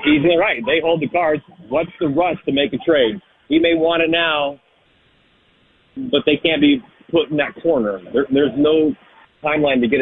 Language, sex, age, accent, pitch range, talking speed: English, male, 40-59, American, 145-185 Hz, 205 wpm